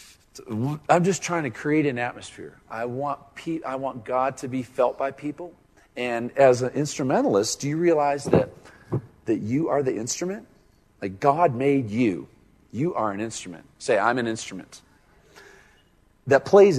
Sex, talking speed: male, 165 wpm